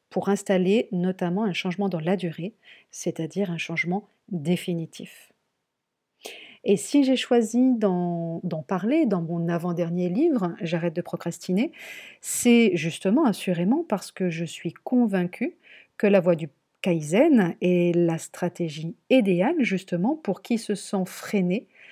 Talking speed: 130 wpm